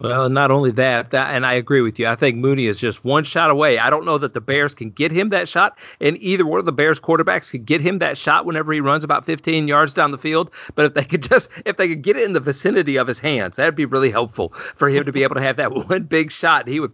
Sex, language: male, English